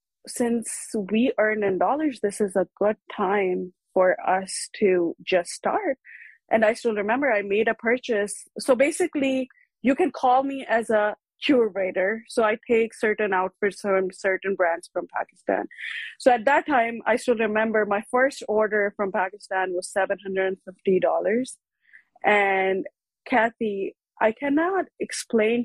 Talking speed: 145 wpm